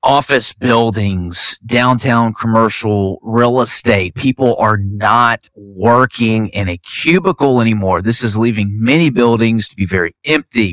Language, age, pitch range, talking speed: English, 30-49, 100-120 Hz, 130 wpm